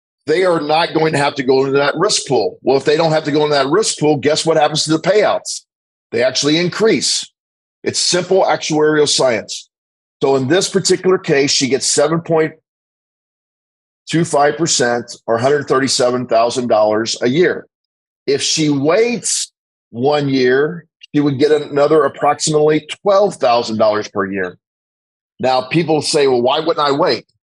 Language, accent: English, American